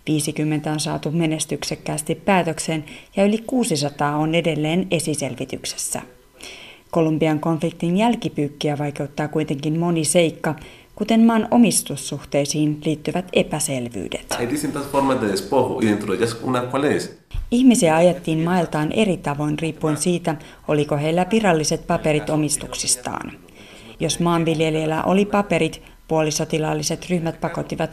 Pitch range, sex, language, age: 145-170 Hz, female, Finnish, 30-49